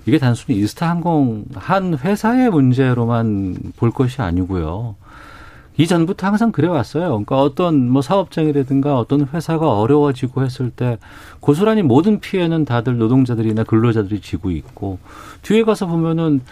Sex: male